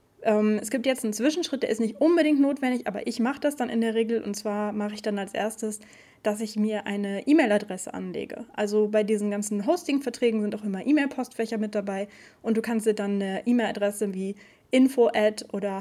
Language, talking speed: German, 195 wpm